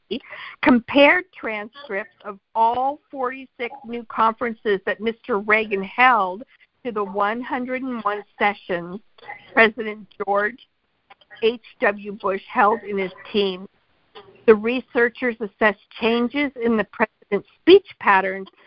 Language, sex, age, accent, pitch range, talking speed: English, female, 50-69, American, 200-245 Hz, 105 wpm